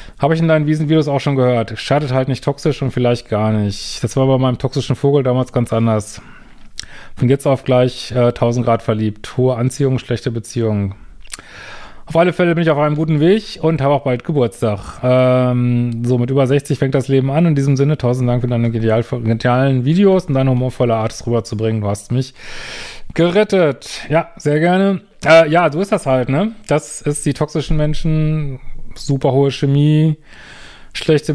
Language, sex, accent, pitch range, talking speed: German, male, German, 125-150 Hz, 190 wpm